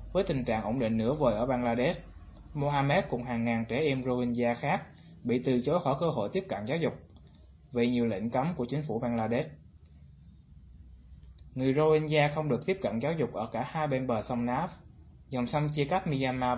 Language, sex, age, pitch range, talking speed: Vietnamese, male, 20-39, 115-145 Hz, 200 wpm